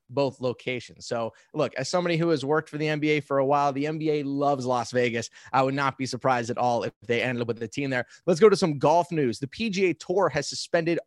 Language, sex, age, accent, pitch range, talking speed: English, male, 20-39, American, 135-165 Hz, 250 wpm